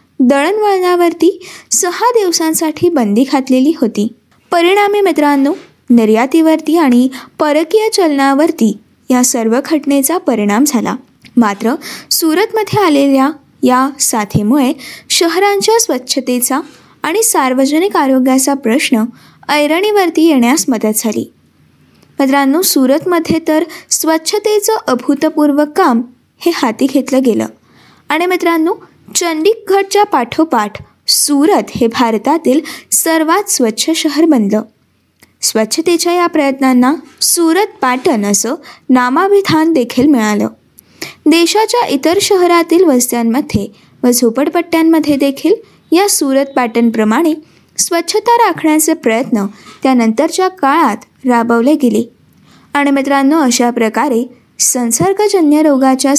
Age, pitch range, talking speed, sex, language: 20-39, 255-345 Hz, 90 wpm, female, Marathi